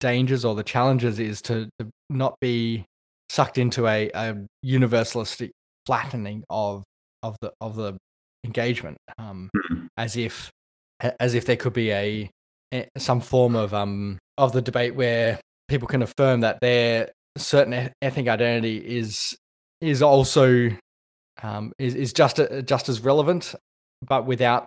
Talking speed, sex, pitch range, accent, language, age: 145 wpm, male, 105-125 Hz, Australian, English, 20-39